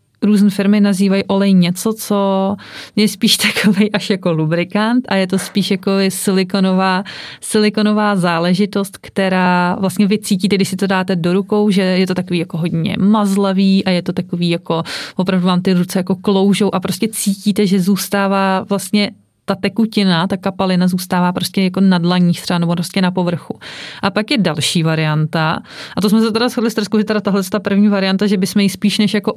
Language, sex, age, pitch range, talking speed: Czech, female, 30-49, 180-205 Hz, 185 wpm